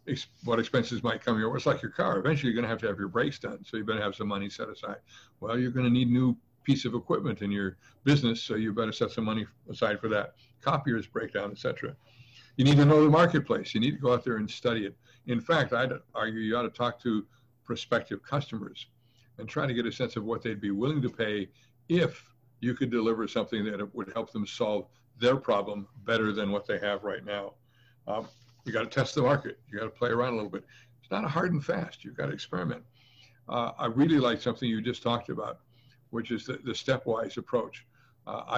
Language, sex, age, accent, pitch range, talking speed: English, male, 60-79, American, 115-130 Hz, 235 wpm